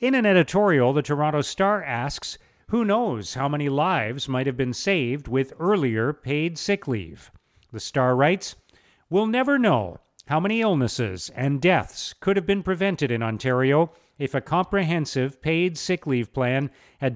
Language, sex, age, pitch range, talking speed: English, male, 40-59, 125-170 Hz, 160 wpm